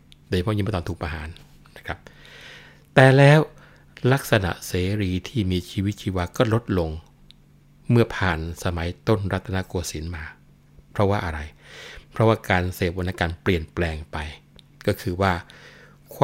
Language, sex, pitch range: Thai, male, 90-110 Hz